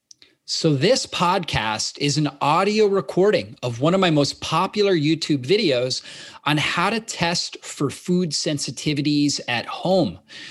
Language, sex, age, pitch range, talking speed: English, male, 30-49, 140-190 Hz, 135 wpm